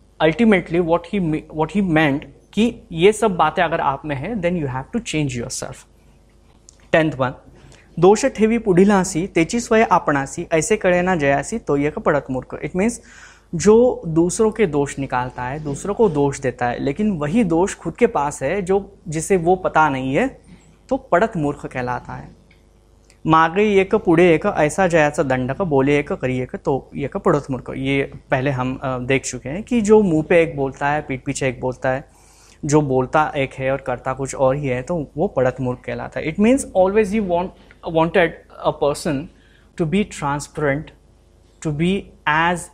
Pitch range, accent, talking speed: 135-185 Hz, Indian, 155 wpm